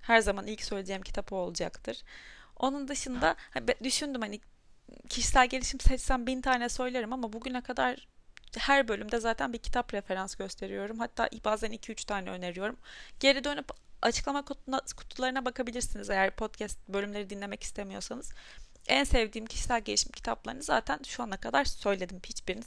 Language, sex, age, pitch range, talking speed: Turkish, female, 30-49, 195-250 Hz, 145 wpm